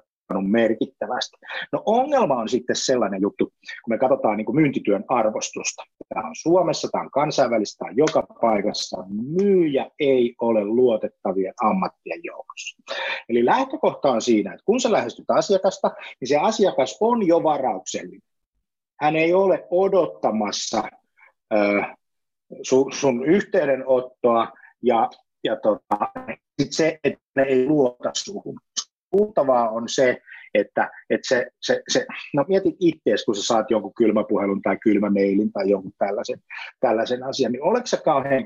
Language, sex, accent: Finnish, male, native